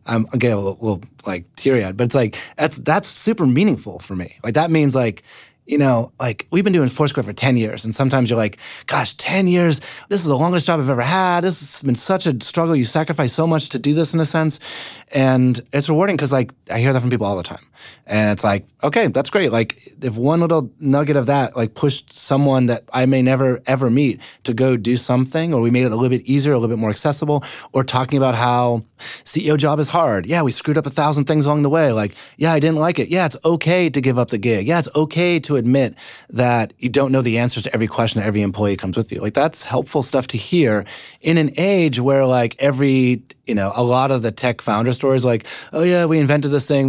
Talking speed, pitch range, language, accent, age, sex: 245 wpm, 115-150 Hz, English, American, 20-39, male